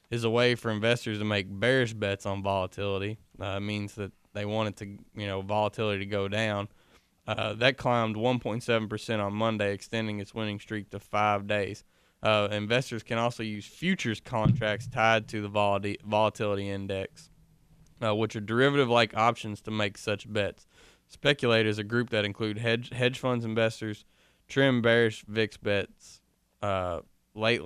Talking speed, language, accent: 165 wpm, English, American